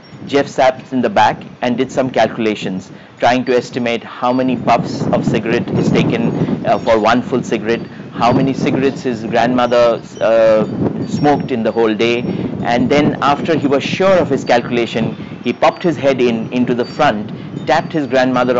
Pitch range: 120-155 Hz